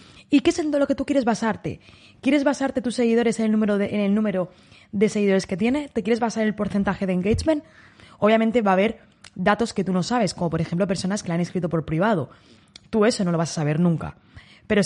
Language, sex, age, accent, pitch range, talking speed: Spanish, female, 20-39, Spanish, 185-235 Hz, 240 wpm